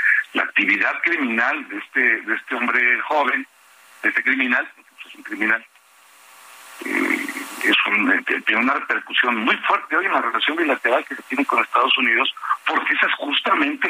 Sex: male